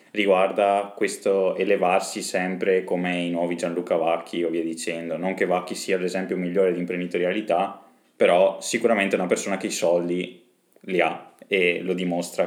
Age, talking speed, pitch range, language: 20-39, 160 wpm, 90-110 Hz, Italian